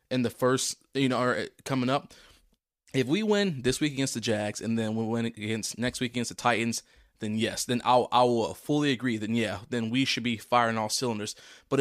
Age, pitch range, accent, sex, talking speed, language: 20-39, 110-130 Hz, American, male, 225 wpm, English